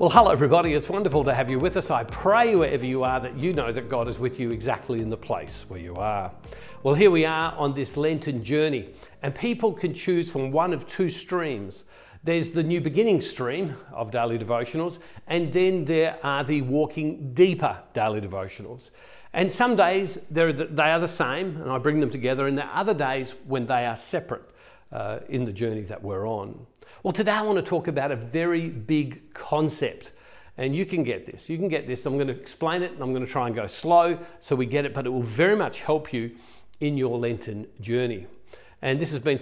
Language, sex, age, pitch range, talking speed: English, male, 50-69, 125-170 Hz, 220 wpm